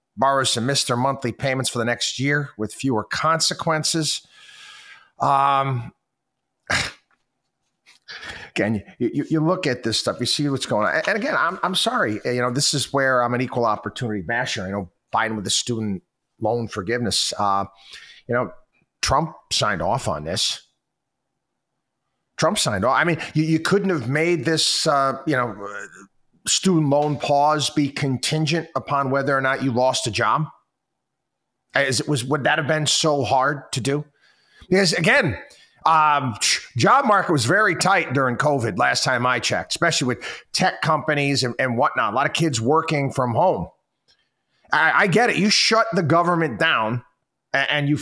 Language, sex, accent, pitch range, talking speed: English, male, American, 125-155 Hz, 165 wpm